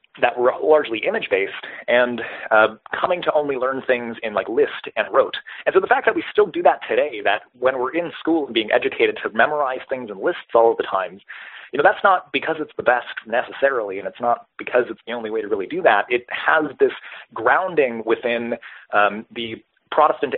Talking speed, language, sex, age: 210 wpm, English, male, 30-49